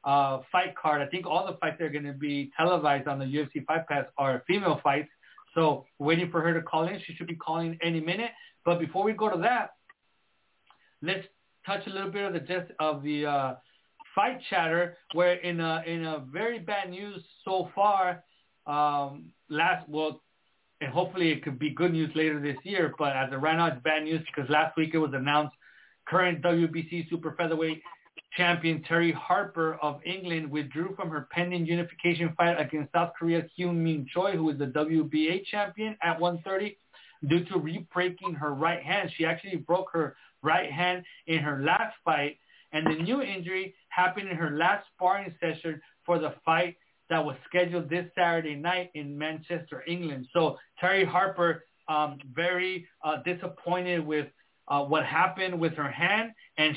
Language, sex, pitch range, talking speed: English, male, 155-180 Hz, 180 wpm